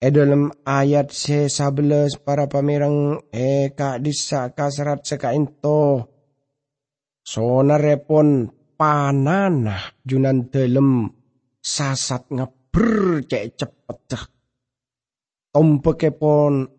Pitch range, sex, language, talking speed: 130-175 Hz, male, English, 70 wpm